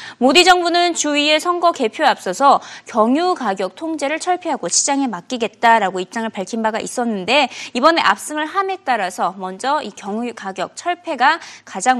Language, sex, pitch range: Korean, female, 215-320 Hz